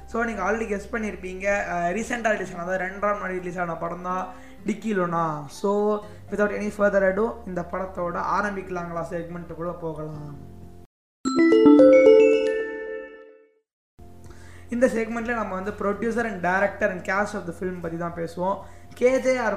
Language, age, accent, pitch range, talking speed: Tamil, 20-39, native, 175-220 Hz, 90 wpm